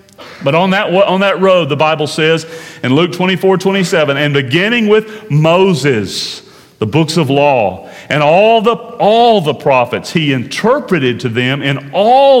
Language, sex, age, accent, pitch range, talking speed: English, male, 40-59, American, 155-215 Hz, 160 wpm